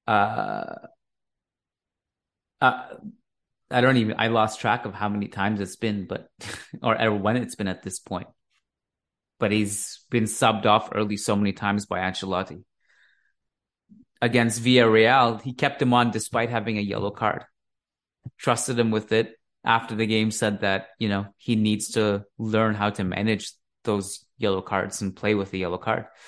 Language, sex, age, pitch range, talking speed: English, male, 30-49, 105-125 Hz, 160 wpm